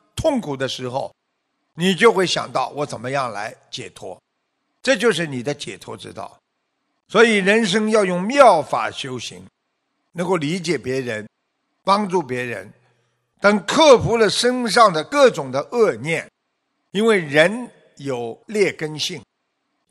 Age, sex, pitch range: 50-69, male, 160-230 Hz